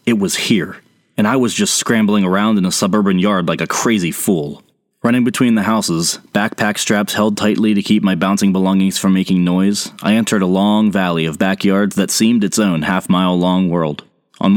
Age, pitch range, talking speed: 30-49, 90-115 Hz, 195 wpm